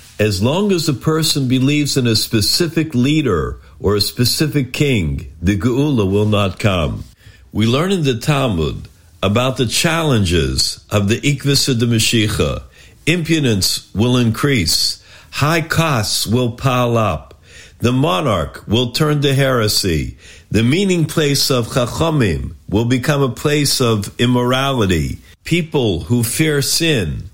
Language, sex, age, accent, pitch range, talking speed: English, male, 50-69, American, 105-145 Hz, 135 wpm